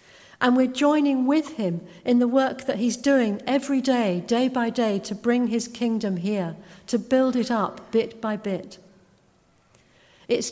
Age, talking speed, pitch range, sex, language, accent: 60-79, 165 wpm, 195-260 Hz, female, English, British